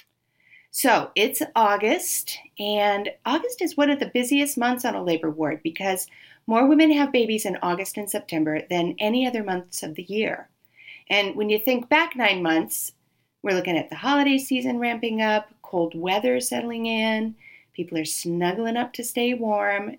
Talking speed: 170 wpm